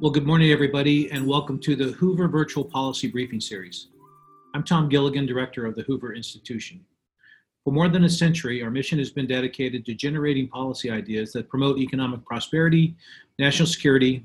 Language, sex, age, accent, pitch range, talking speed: English, male, 40-59, American, 120-150 Hz, 175 wpm